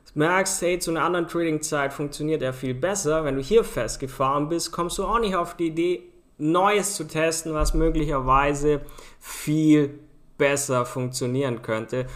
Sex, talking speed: male, 155 wpm